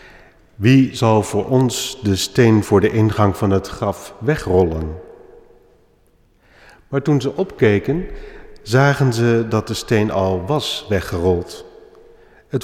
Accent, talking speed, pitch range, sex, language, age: Dutch, 125 wpm, 100-135 Hz, male, Dutch, 50-69